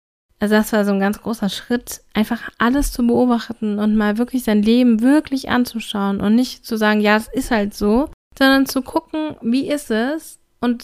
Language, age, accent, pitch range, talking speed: German, 20-39, German, 215-265 Hz, 195 wpm